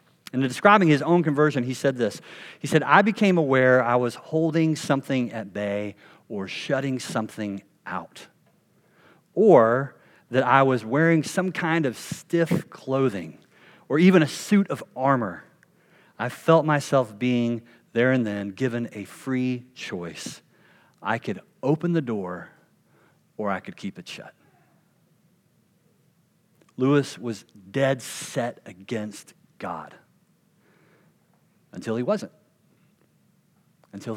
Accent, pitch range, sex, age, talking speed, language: American, 115-160 Hz, male, 40-59, 125 wpm, English